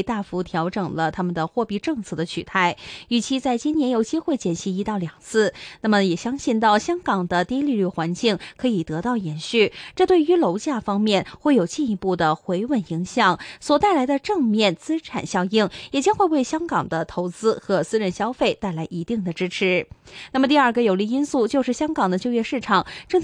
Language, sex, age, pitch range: Chinese, female, 20-39, 185-270 Hz